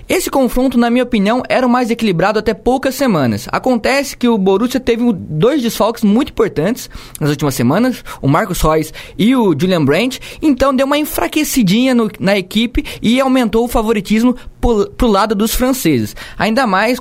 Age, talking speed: 20-39, 175 wpm